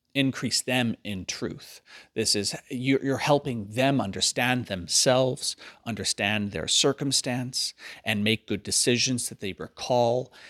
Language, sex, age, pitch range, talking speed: English, male, 40-59, 95-125 Hz, 120 wpm